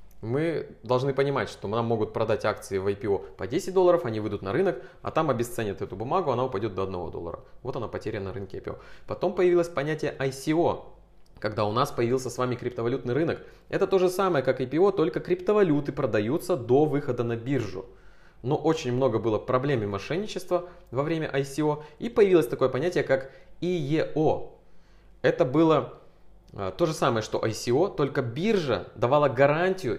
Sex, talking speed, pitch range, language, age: male, 170 wpm, 115-160 Hz, Russian, 20-39